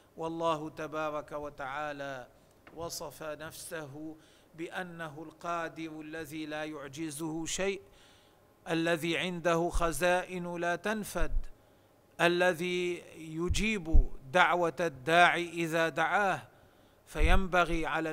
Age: 40-59